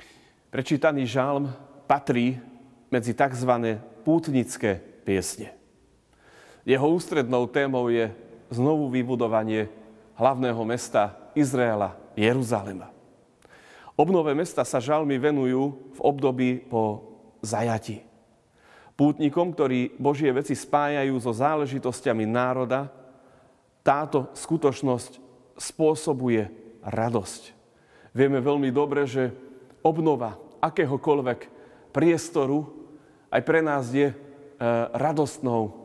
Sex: male